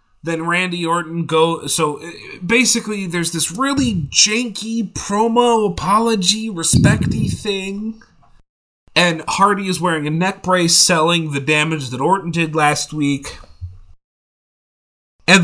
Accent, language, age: American, English, 30-49